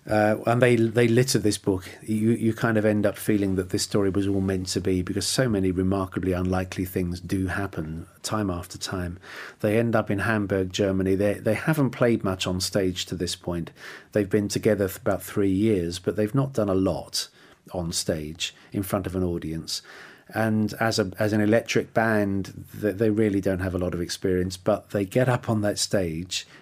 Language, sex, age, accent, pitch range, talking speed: English, male, 40-59, British, 95-115 Hz, 205 wpm